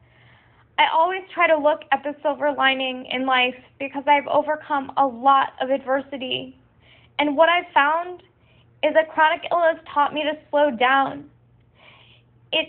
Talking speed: 150 wpm